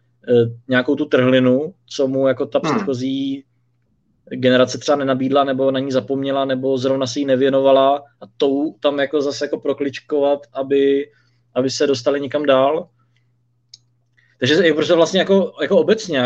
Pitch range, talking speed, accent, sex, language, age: 125-145 Hz, 145 wpm, native, male, Czech, 20-39